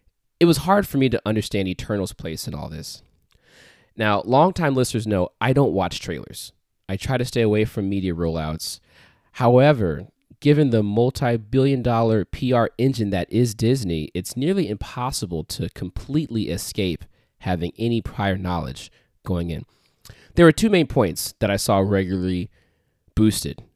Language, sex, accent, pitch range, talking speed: English, male, American, 95-130 Hz, 150 wpm